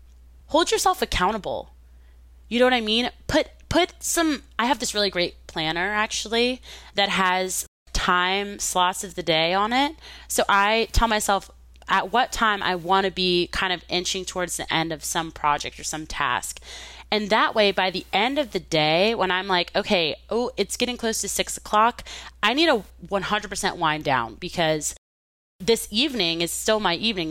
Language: English